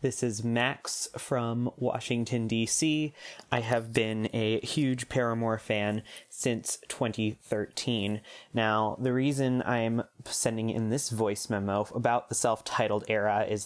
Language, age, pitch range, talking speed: English, 20-39, 105-130 Hz, 125 wpm